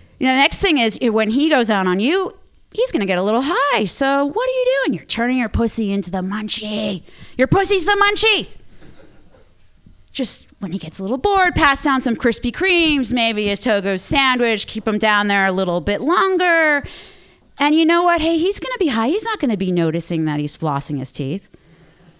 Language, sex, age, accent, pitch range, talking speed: English, female, 30-49, American, 170-260 Hz, 215 wpm